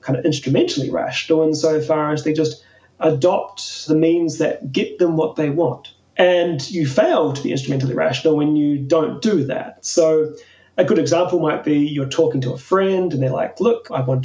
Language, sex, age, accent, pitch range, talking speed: Danish, male, 30-49, Australian, 140-170 Hz, 195 wpm